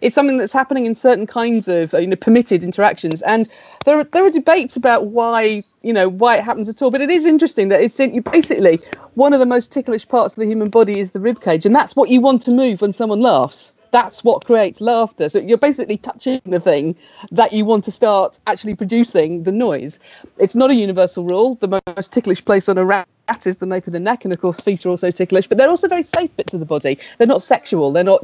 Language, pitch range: English, 185-255 Hz